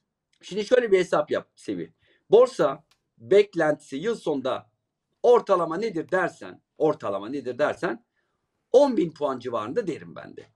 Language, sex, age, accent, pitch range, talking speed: Turkish, male, 50-69, native, 150-215 Hz, 125 wpm